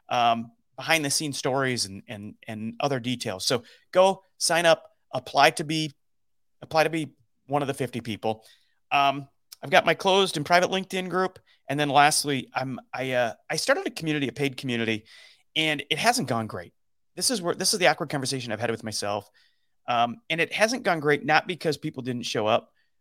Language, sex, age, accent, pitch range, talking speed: English, male, 30-49, American, 120-155 Hz, 200 wpm